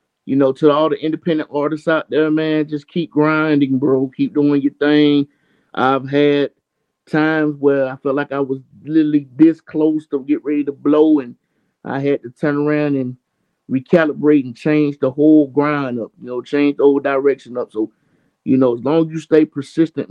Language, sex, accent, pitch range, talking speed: English, male, American, 135-150 Hz, 195 wpm